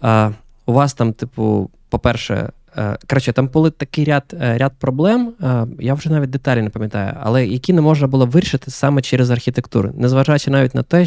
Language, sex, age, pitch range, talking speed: Ukrainian, male, 20-39, 110-135 Hz, 185 wpm